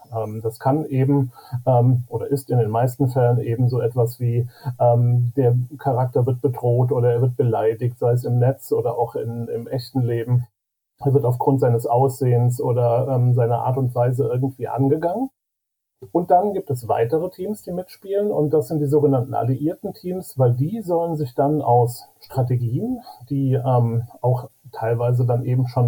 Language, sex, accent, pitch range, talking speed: German, male, German, 120-140 Hz, 160 wpm